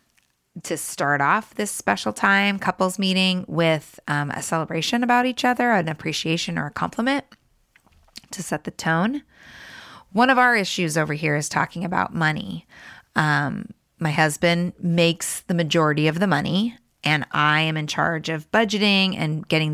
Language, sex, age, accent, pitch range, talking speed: English, female, 20-39, American, 155-195 Hz, 160 wpm